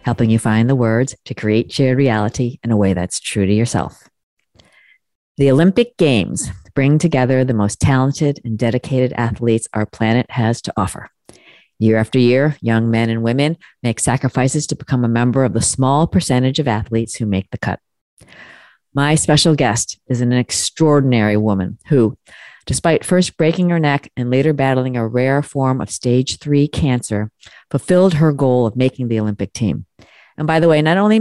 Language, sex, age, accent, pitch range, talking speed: English, female, 40-59, American, 115-145 Hz, 175 wpm